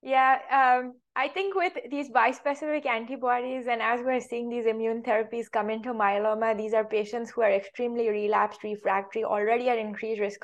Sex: female